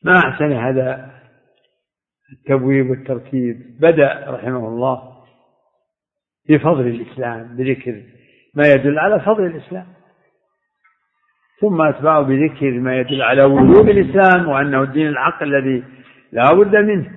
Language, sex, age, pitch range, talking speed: Arabic, male, 60-79, 130-195 Hz, 110 wpm